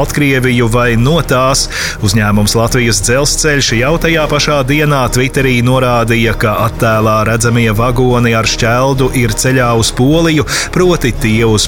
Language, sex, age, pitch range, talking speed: English, male, 30-49, 115-140 Hz, 120 wpm